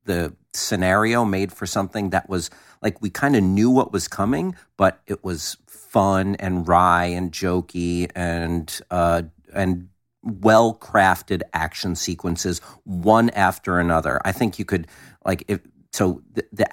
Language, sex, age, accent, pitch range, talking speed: English, male, 50-69, American, 90-130 Hz, 145 wpm